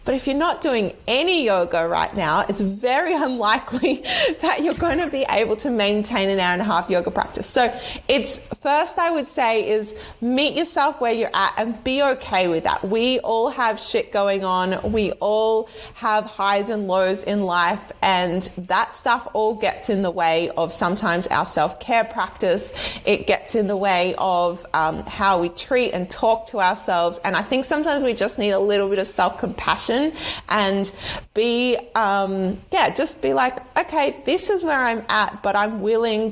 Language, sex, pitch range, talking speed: English, female, 195-245 Hz, 185 wpm